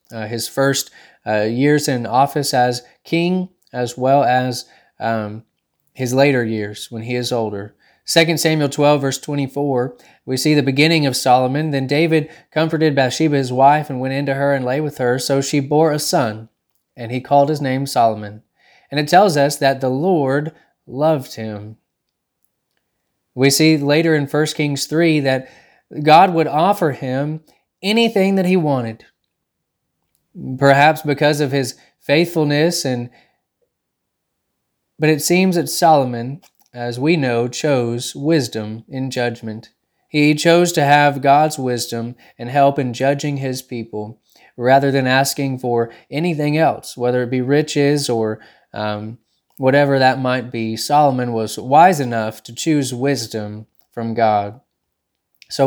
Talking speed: 150 wpm